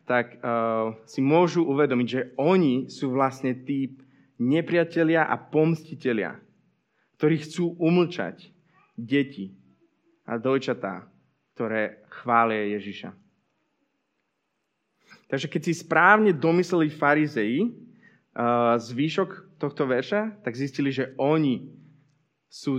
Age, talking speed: 20-39, 100 wpm